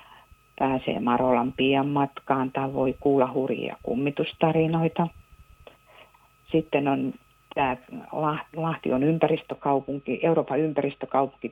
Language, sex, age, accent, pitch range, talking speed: Finnish, female, 50-69, native, 130-160 Hz, 90 wpm